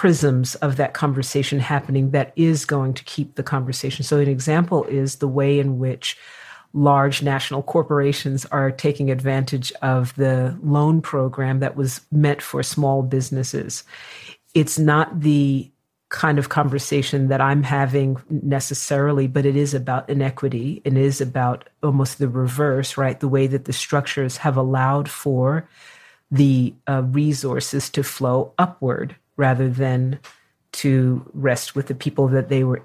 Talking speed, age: 150 wpm, 40-59